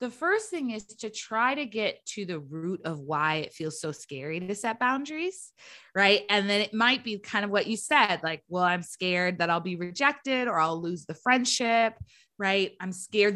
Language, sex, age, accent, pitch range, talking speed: English, female, 20-39, American, 180-245 Hz, 210 wpm